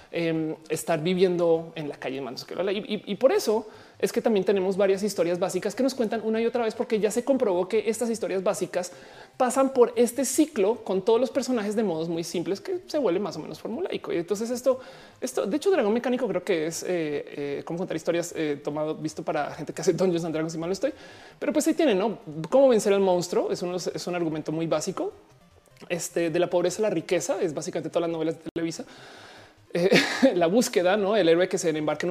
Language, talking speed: Spanish, 235 wpm